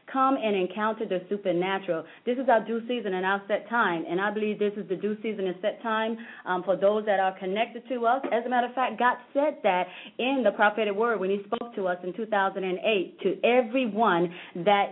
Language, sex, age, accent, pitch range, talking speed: English, female, 30-49, American, 190-225 Hz, 220 wpm